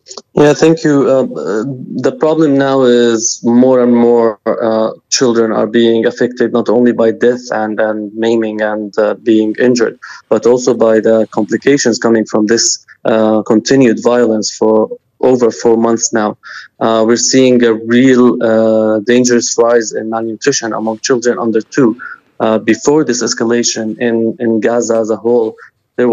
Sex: male